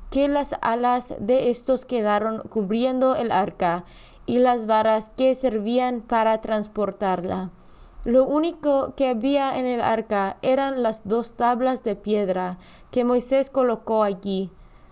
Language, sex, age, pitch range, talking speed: Spanish, female, 20-39, 210-260 Hz, 135 wpm